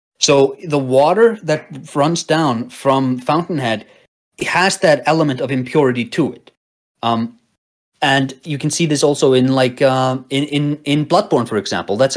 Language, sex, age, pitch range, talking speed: English, male, 30-49, 130-160 Hz, 165 wpm